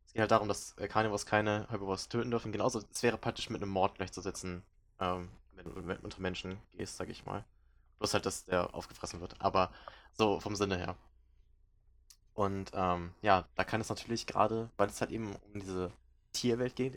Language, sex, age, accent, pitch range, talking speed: German, male, 20-39, German, 90-110 Hz, 190 wpm